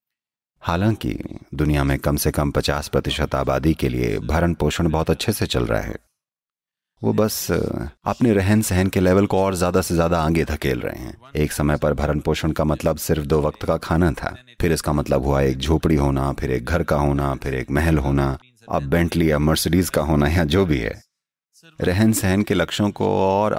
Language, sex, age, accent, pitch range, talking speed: English, male, 30-49, Indian, 75-100 Hz, 175 wpm